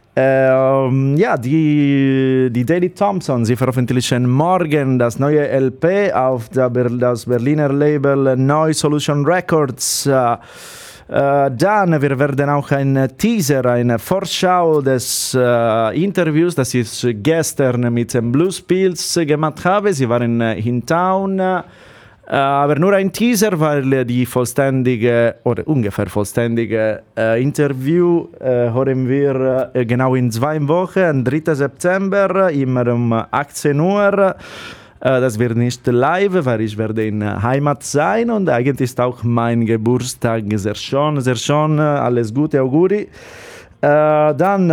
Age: 30-49